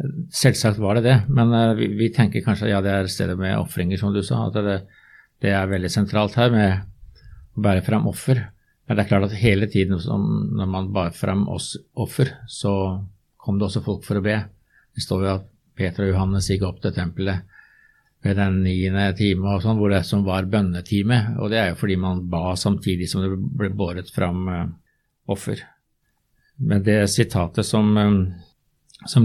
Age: 50-69